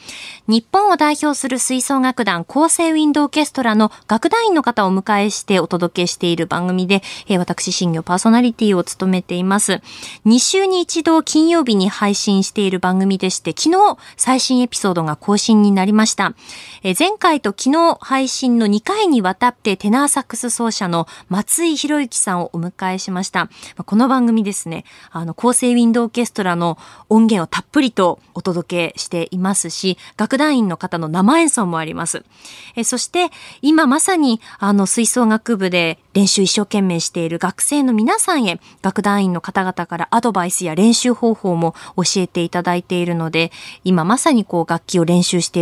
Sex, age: female, 20-39